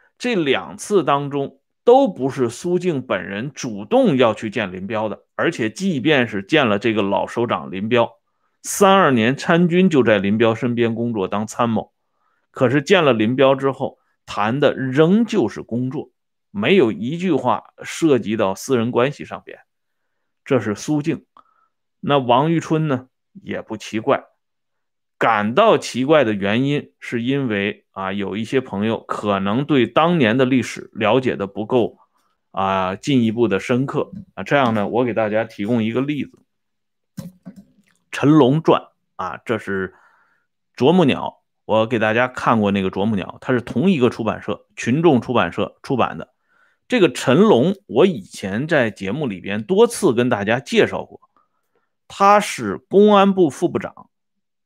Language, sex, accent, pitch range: Swedish, male, Chinese, 110-175 Hz